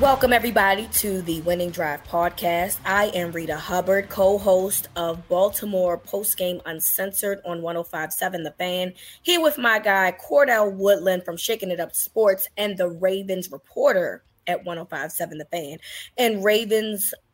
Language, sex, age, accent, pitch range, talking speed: English, female, 20-39, American, 175-225 Hz, 140 wpm